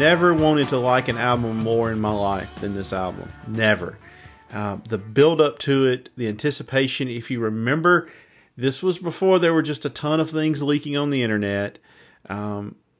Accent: American